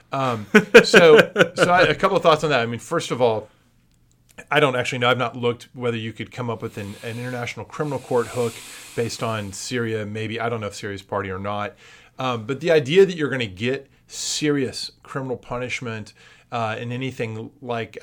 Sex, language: male, English